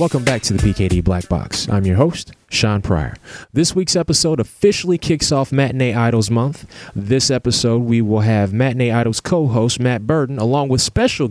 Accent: American